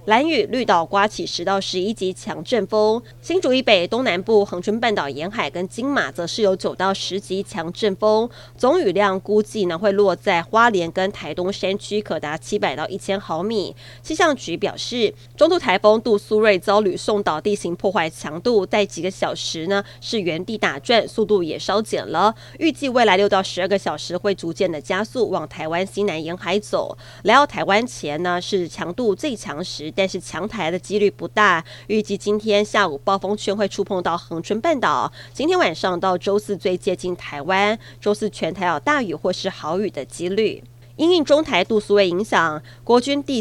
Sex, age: female, 20-39